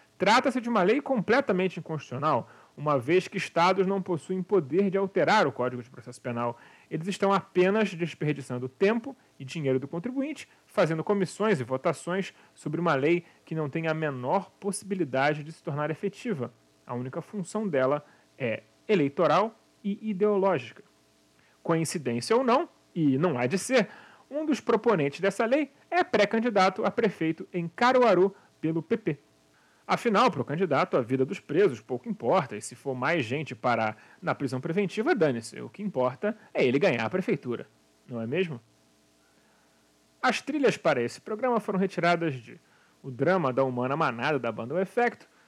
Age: 40-59